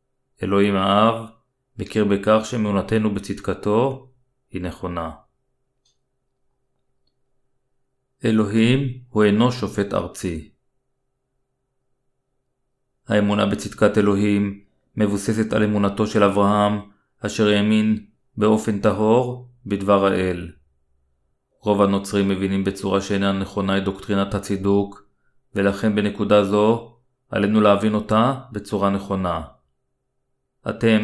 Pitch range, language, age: 100-120 Hz, Hebrew, 30-49